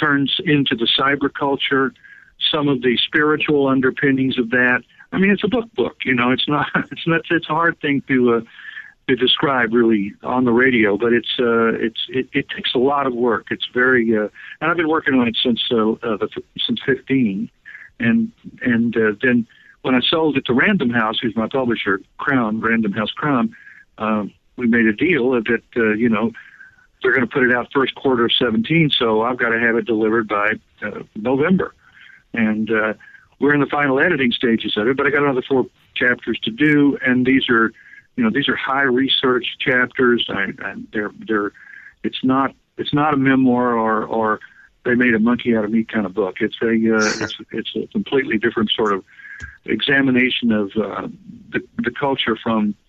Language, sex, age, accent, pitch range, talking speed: English, male, 50-69, American, 115-145 Hz, 200 wpm